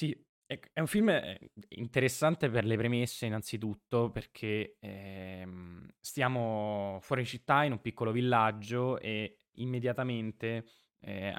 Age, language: 10-29, Italian